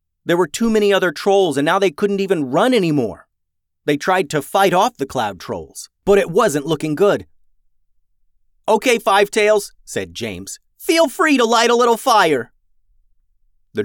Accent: American